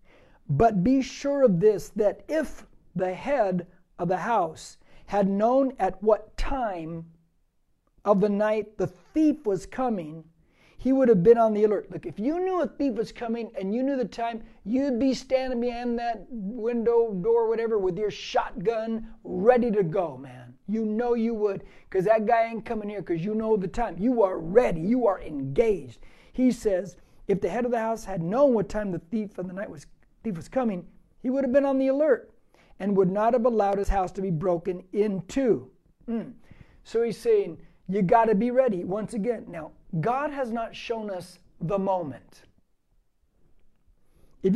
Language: English